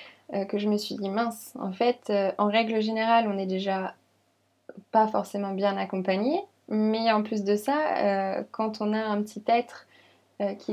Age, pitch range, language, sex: 20-39, 195-240 Hz, French, female